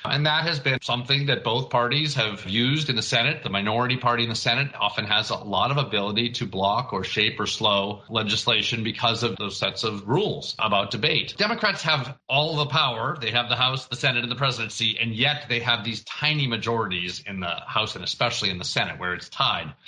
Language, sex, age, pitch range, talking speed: English, male, 40-59, 115-150 Hz, 215 wpm